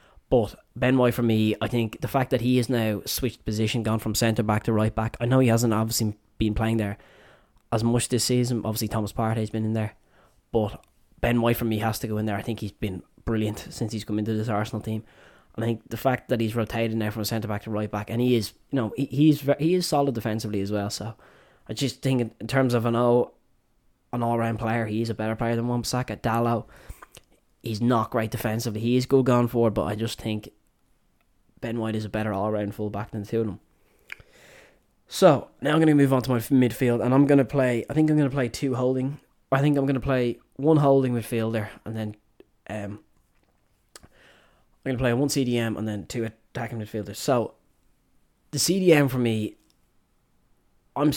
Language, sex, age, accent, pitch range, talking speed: English, male, 10-29, Irish, 110-125 Hz, 210 wpm